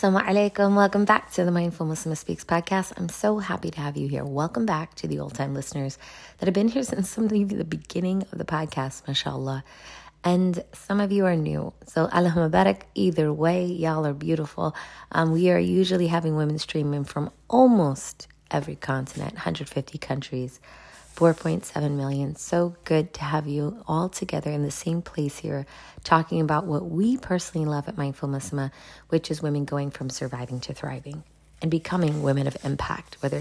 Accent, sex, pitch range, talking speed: American, female, 145-185 Hz, 180 wpm